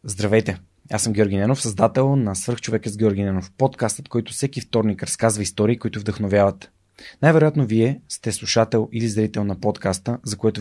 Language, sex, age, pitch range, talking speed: Bulgarian, male, 20-39, 105-125 Hz, 165 wpm